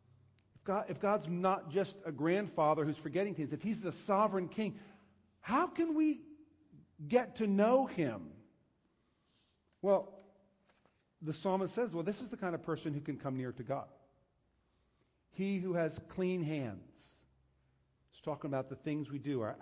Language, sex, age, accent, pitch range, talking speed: English, male, 40-59, American, 135-190 Hz, 160 wpm